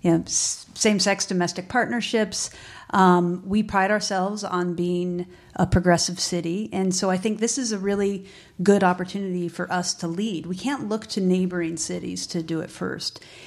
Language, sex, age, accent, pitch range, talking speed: English, female, 50-69, American, 180-215 Hz, 175 wpm